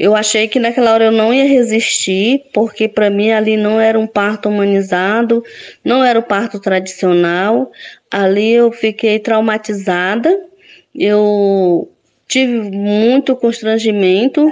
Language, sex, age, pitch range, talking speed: Portuguese, female, 20-39, 205-260 Hz, 130 wpm